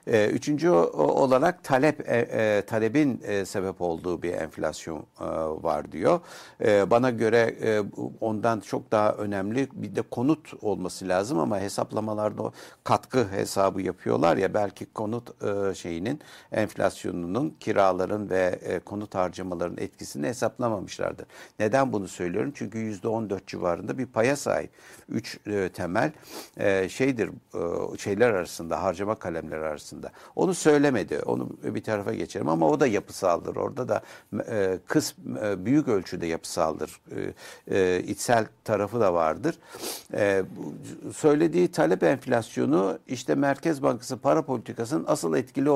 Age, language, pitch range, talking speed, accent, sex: 60-79, Turkish, 95-135 Hz, 120 wpm, native, male